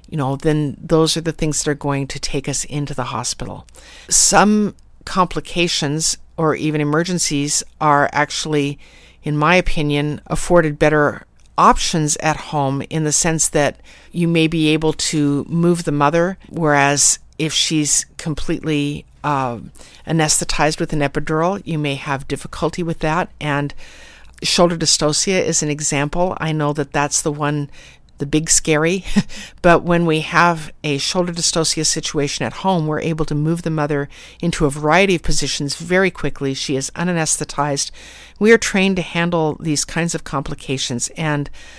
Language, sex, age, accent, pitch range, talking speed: English, female, 50-69, American, 145-170 Hz, 155 wpm